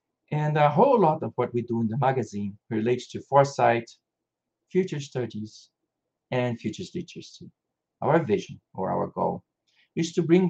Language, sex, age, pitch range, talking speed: English, male, 50-69, 115-165 Hz, 155 wpm